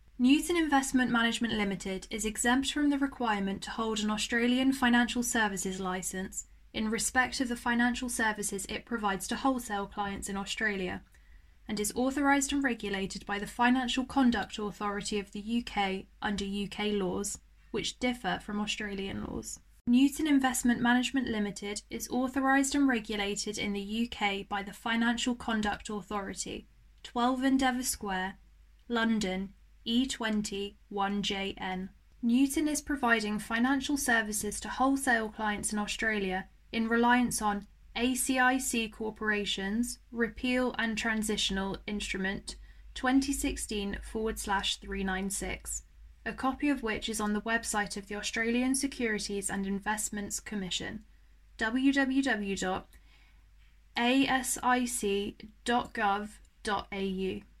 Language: English